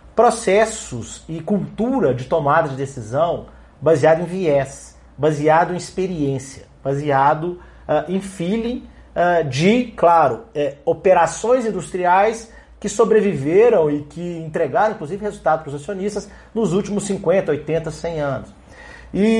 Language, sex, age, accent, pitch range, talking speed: Portuguese, male, 40-59, Brazilian, 140-205 Hz, 115 wpm